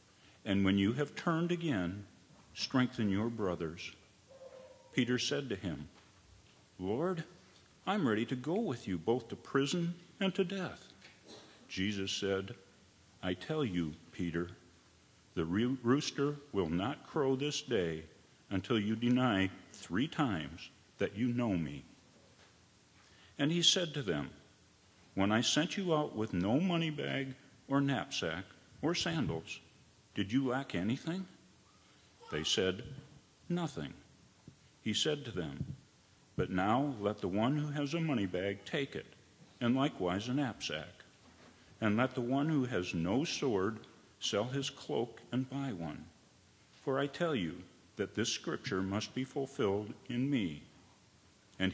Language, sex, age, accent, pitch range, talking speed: English, male, 50-69, American, 100-145 Hz, 140 wpm